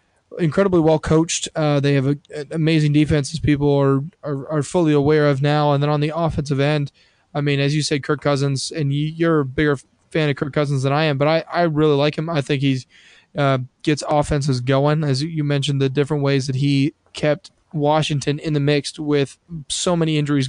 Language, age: English, 20-39